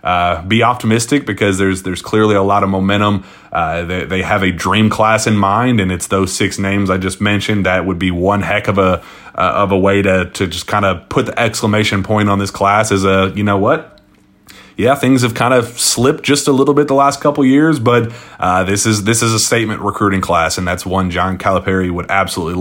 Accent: American